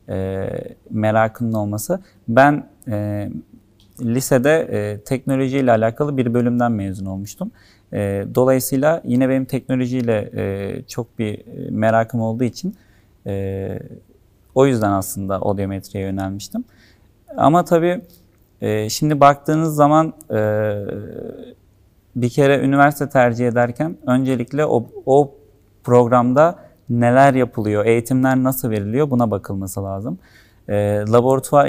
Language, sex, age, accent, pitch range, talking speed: Turkish, male, 40-59, native, 105-140 Hz, 105 wpm